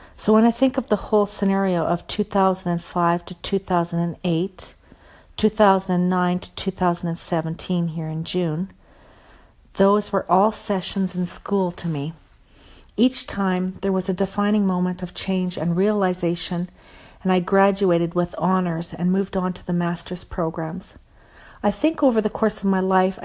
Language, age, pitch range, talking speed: English, 50-69, 175-205 Hz, 145 wpm